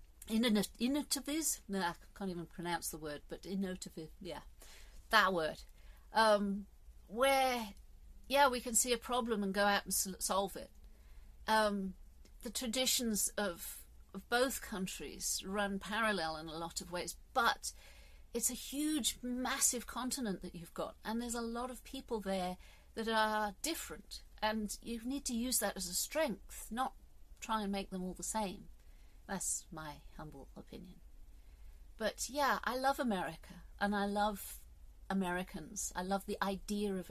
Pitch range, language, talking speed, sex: 175-225 Hz, English, 155 wpm, female